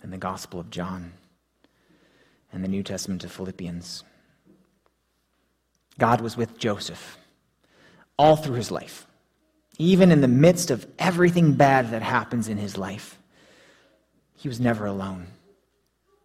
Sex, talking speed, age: male, 130 wpm, 30-49